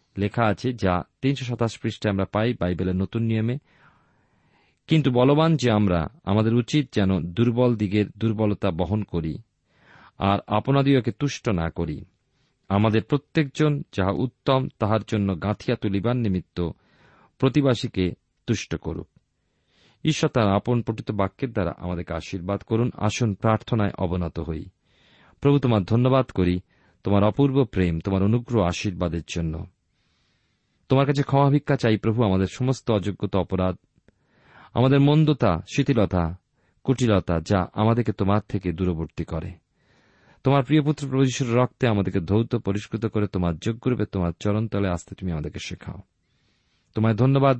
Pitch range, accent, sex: 95-125 Hz, native, male